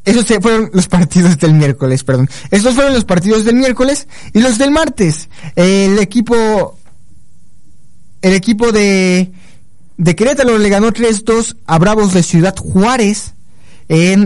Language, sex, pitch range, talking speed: Spanish, male, 160-220 Hz, 140 wpm